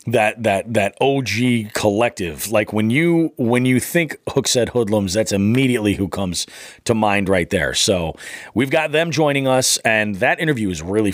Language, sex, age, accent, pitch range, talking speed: English, male, 30-49, American, 95-135 Hz, 170 wpm